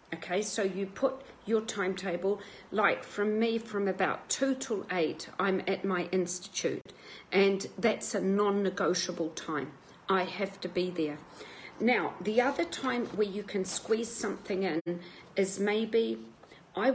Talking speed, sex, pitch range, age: 145 wpm, female, 180-210 Hz, 50-69